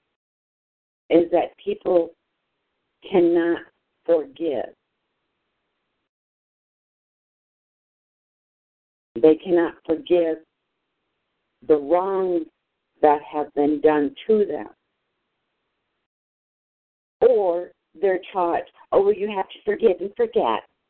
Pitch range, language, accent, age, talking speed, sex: 155-195 Hz, English, American, 50-69, 80 wpm, female